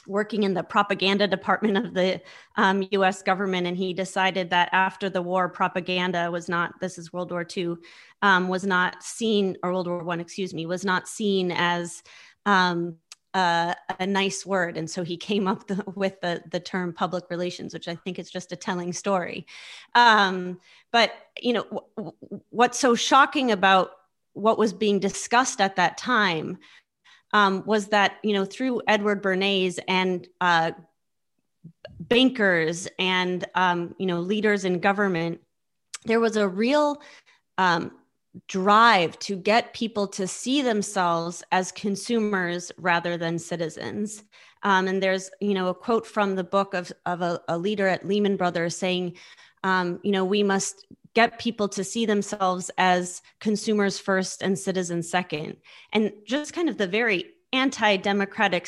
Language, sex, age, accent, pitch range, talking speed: English, female, 30-49, American, 180-210 Hz, 160 wpm